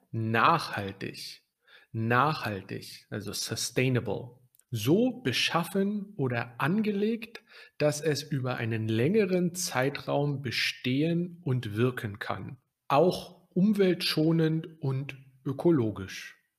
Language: German